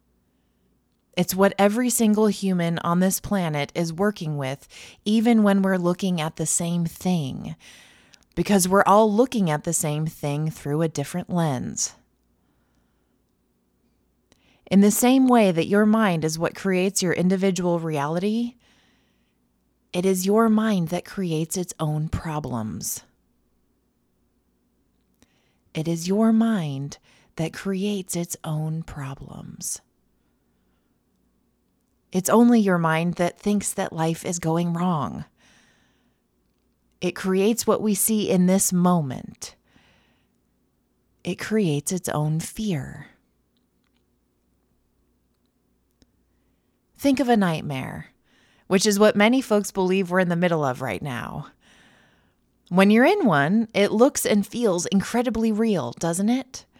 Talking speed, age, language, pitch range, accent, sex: 120 wpm, 20-39, English, 150-205 Hz, American, female